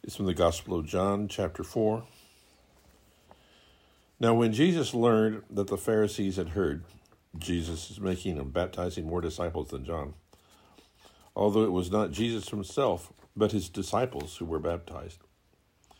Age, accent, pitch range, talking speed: 60-79, American, 85-105 Hz, 145 wpm